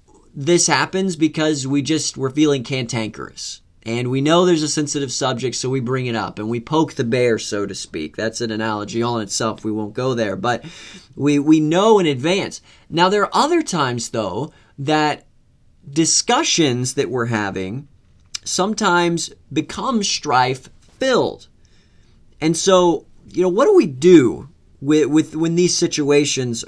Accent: American